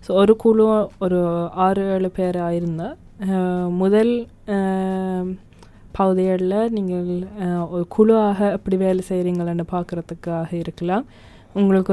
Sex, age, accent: female, 20-39, native